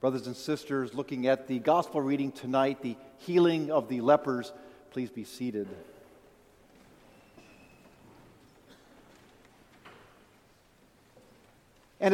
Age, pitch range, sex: 50-69, 135-195 Hz, male